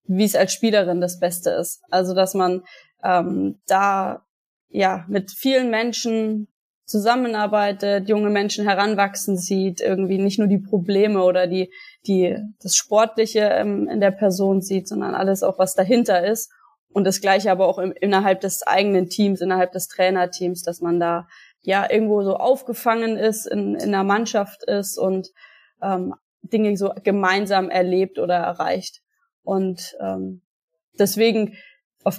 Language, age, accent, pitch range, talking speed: German, 20-39, German, 185-210 Hz, 150 wpm